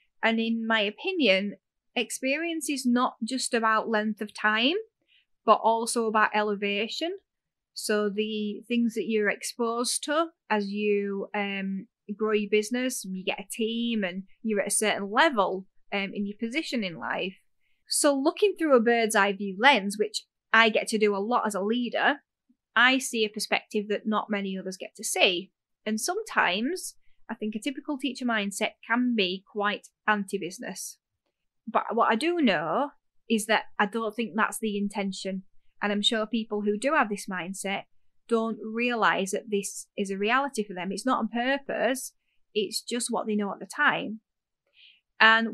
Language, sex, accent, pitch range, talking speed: English, female, British, 205-245 Hz, 170 wpm